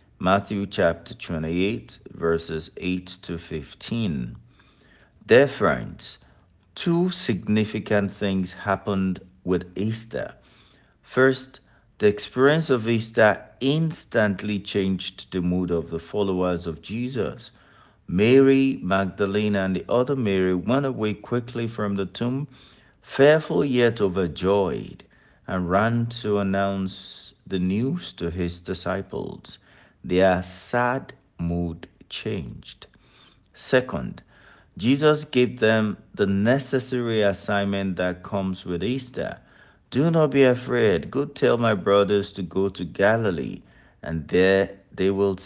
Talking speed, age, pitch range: 110 wpm, 60-79, 95-120 Hz